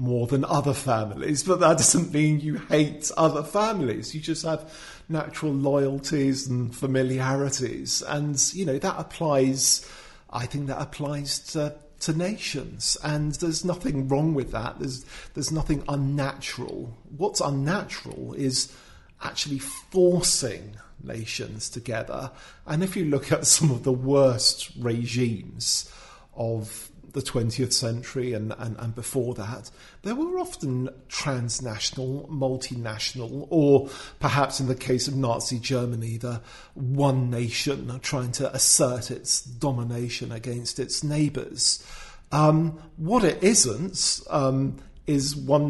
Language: English